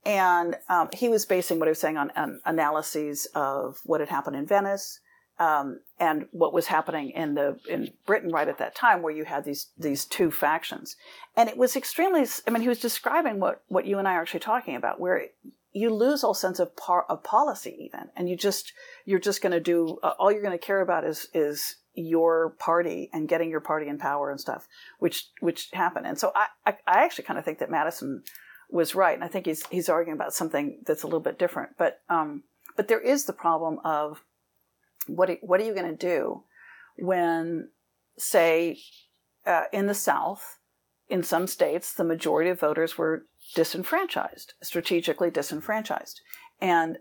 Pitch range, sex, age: 160-215 Hz, female, 50-69